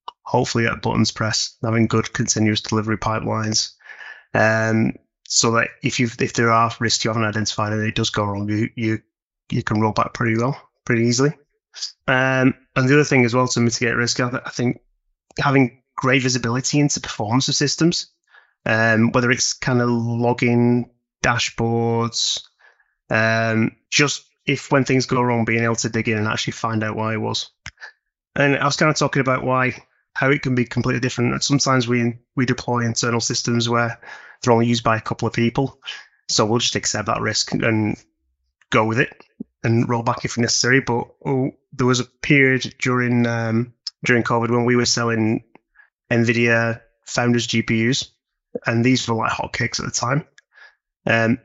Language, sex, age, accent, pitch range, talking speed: English, male, 20-39, British, 115-130 Hz, 175 wpm